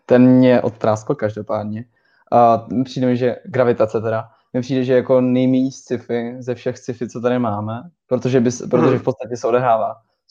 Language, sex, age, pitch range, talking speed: Czech, male, 20-39, 115-130 Hz, 175 wpm